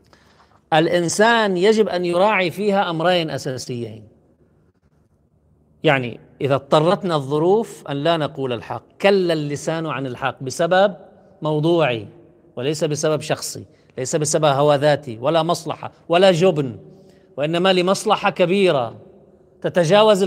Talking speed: 105 wpm